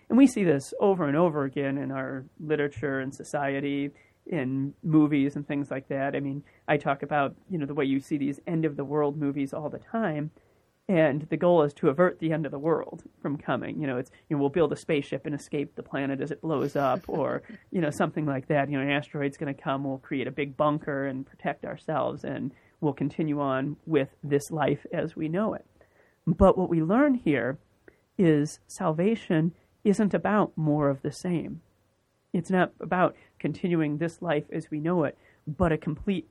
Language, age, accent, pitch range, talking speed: English, 30-49, American, 140-170 Hz, 205 wpm